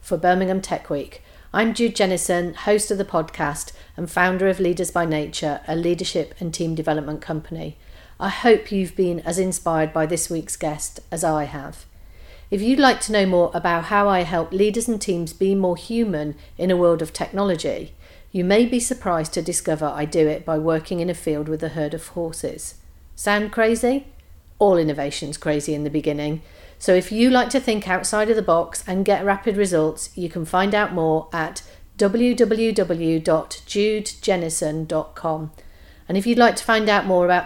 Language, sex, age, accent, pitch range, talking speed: English, female, 40-59, British, 160-205 Hz, 185 wpm